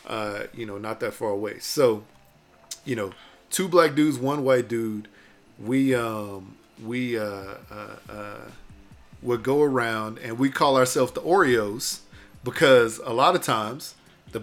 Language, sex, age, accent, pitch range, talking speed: English, male, 40-59, American, 110-130 Hz, 155 wpm